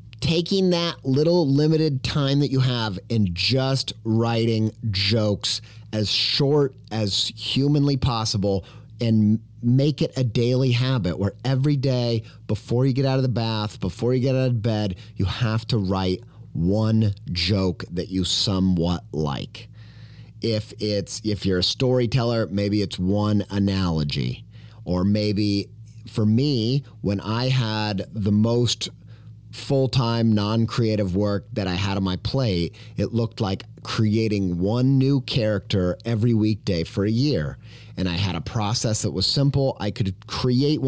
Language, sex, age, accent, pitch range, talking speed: English, male, 30-49, American, 105-125 Hz, 145 wpm